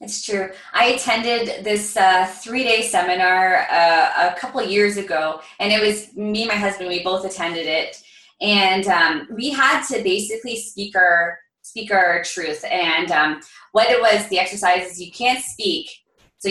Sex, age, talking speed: female, 20-39, 170 wpm